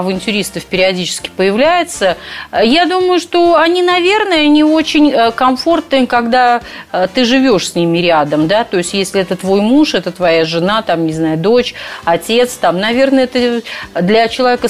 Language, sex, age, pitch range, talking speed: Russian, female, 30-49, 170-255 Hz, 150 wpm